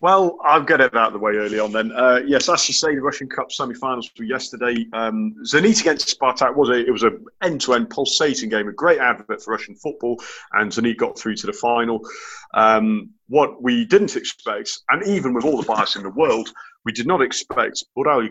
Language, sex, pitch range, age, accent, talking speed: English, male, 115-185 Hz, 40-59, British, 215 wpm